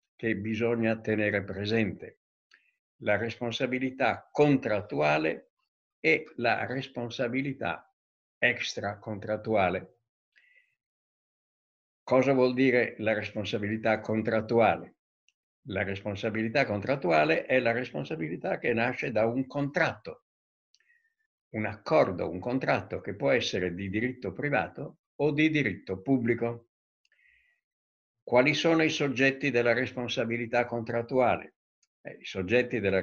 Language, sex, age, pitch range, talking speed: Italian, male, 60-79, 105-140 Hz, 95 wpm